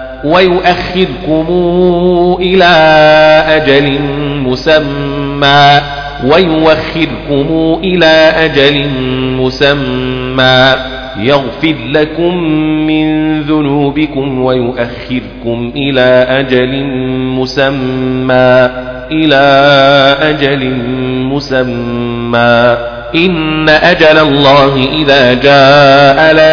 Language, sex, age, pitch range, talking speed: Arabic, male, 40-59, 130-160 Hz, 55 wpm